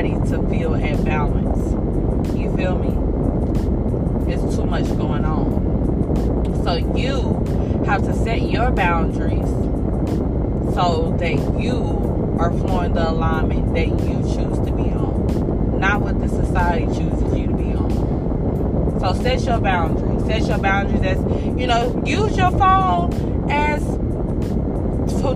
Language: English